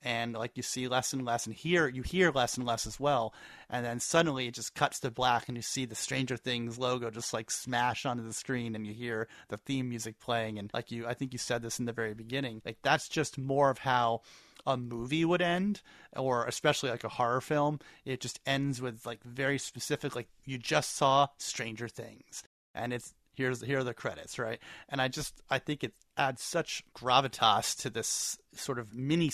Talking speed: 220 wpm